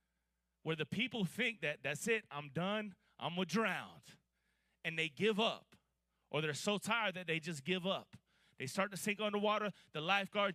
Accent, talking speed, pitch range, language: American, 190 wpm, 150-215 Hz, English